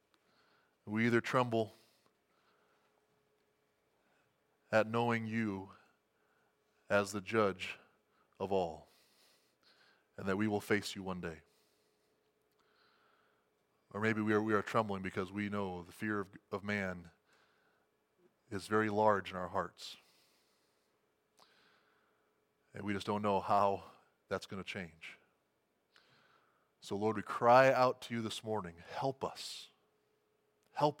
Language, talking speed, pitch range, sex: English, 120 wpm, 95-120 Hz, male